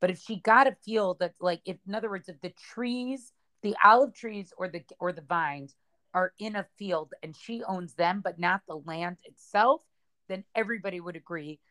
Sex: female